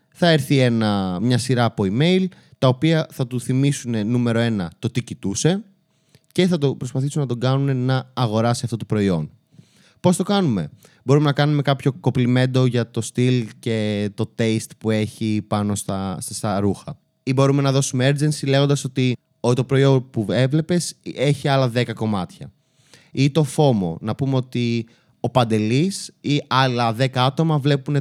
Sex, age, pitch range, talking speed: male, 20-39, 115-140 Hz, 170 wpm